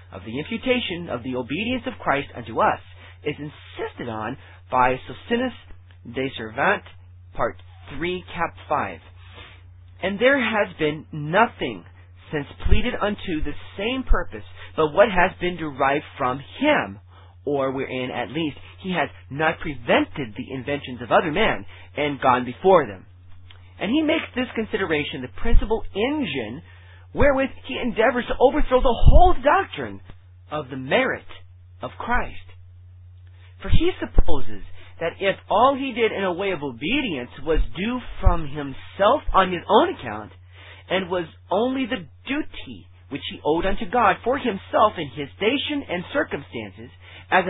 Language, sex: English, male